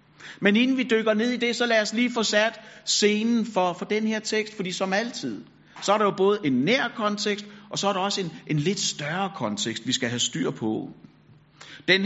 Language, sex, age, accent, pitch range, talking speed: Danish, male, 60-79, native, 175-215 Hz, 230 wpm